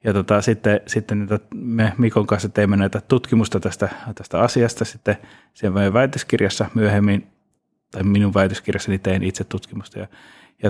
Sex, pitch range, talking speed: male, 100-115 Hz, 140 wpm